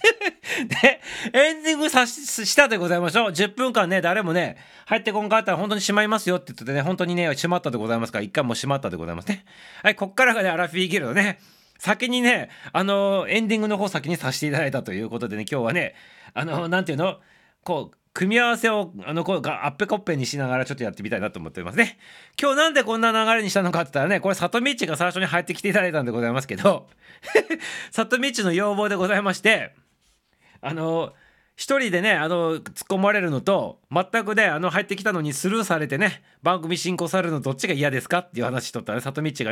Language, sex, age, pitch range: Japanese, male, 40-59, 140-205 Hz